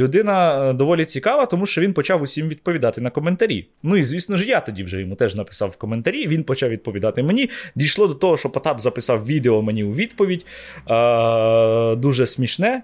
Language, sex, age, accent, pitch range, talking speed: Ukrainian, male, 20-39, native, 105-145 Hz, 180 wpm